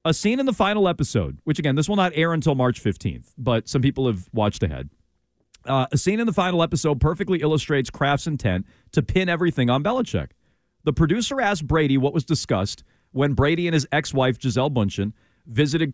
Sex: male